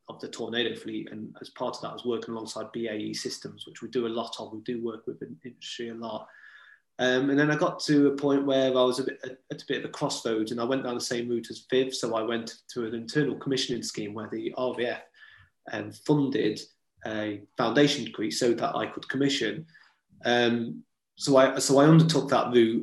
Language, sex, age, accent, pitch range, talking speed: English, male, 20-39, British, 115-135 Hz, 230 wpm